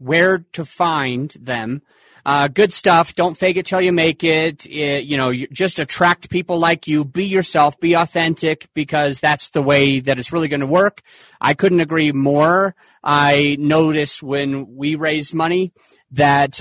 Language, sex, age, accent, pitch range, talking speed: English, male, 30-49, American, 135-170 Hz, 175 wpm